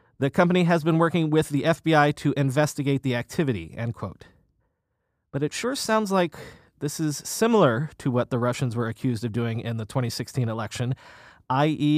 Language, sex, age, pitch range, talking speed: English, male, 30-49, 125-165 Hz, 165 wpm